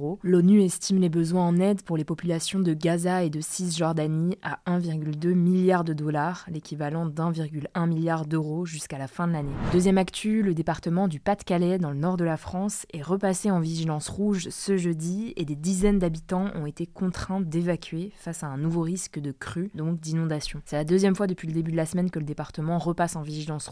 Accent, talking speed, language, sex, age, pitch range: French, 200 wpm, French, female, 20-39, 155-185 Hz